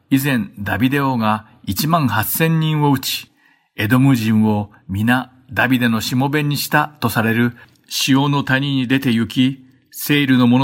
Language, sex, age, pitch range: Japanese, male, 50-69, 110-140 Hz